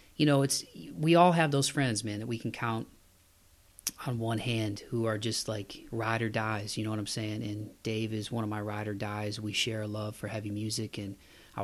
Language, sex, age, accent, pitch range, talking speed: English, male, 30-49, American, 110-130 Hz, 235 wpm